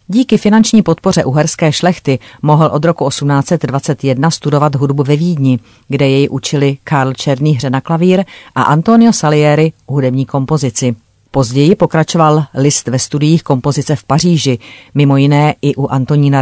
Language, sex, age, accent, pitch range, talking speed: Czech, female, 40-59, native, 135-170 Hz, 145 wpm